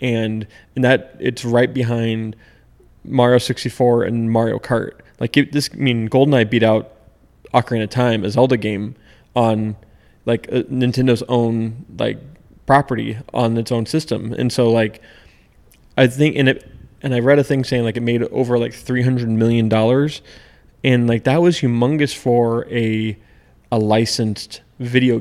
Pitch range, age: 110-125 Hz, 20-39